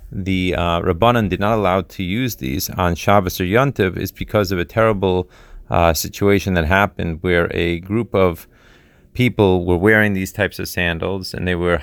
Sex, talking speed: male, 185 wpm